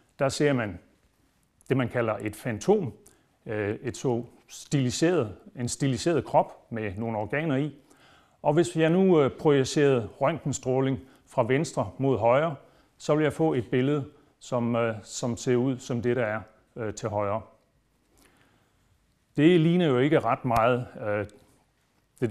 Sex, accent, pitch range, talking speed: male, native, 115-145 Hz, 140 wpm